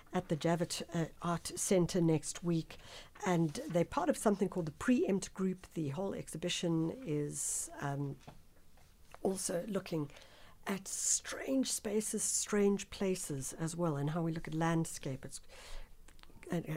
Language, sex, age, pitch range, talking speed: English, female, 60-79, 150-195 Hz, 140 wpm